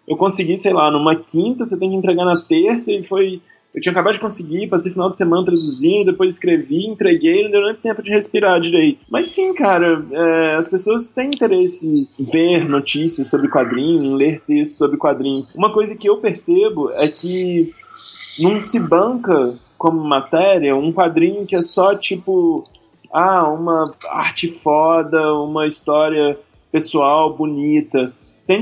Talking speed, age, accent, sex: 165 wpm, 20-39, Brazilian, male